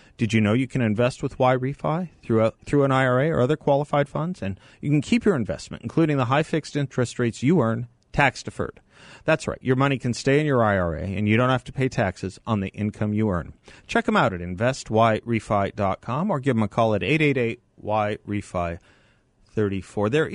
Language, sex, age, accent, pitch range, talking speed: English, male, 40-59, American, 95-130 Hz, 190 wpm